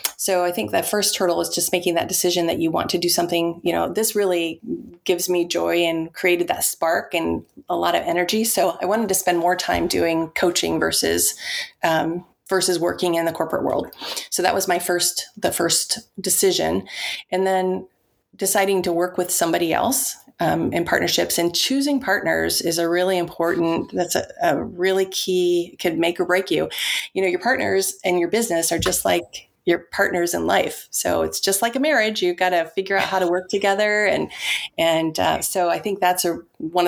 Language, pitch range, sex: English, 170-195 Hz, female